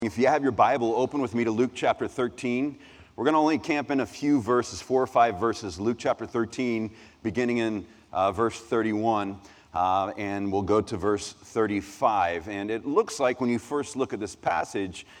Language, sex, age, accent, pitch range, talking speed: English, male, 40-59, American, 105-150 Hz, 200 wpm